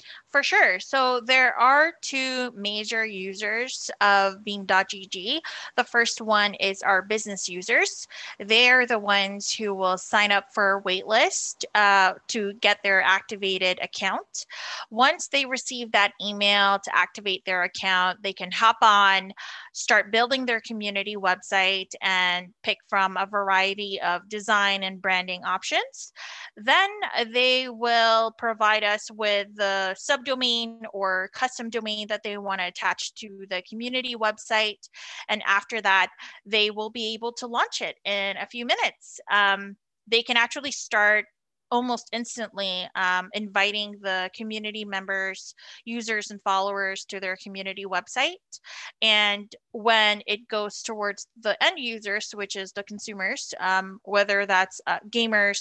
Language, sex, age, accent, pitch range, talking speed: English, female, 20-39, American, 195-230 Hz, 140 wpm